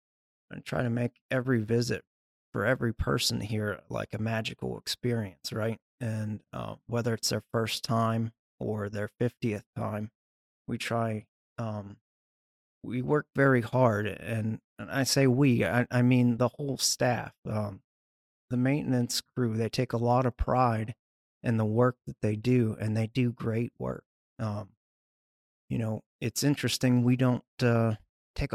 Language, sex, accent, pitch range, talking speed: English, male, American, 105-120 Hz, 155 wpm